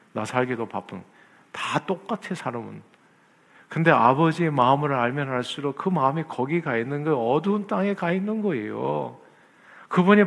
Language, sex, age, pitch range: Korean, male, 50-69, 130-185 Hz